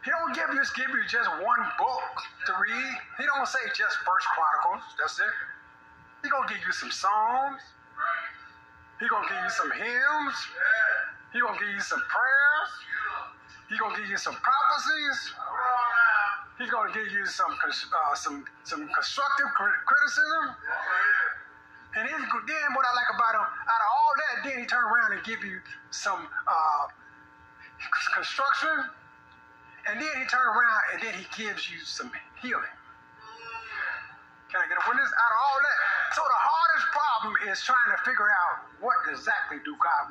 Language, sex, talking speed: English, male, 165 wpm